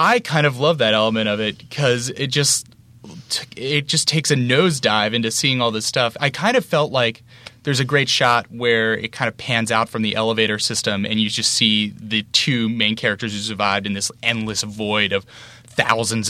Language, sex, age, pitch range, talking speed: English, male, 20-39, 105-120 Hz, 205 wpm